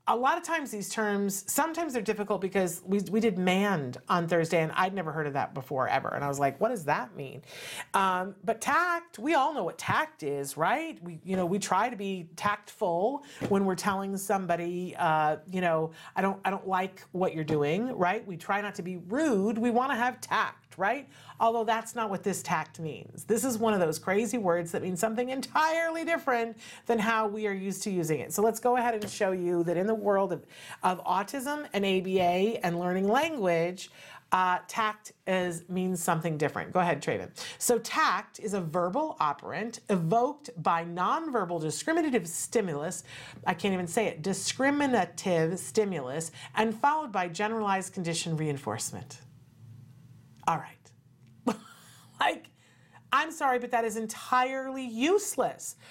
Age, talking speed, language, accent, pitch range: 40-59, 180 wpm, English, American, 175-230 Hz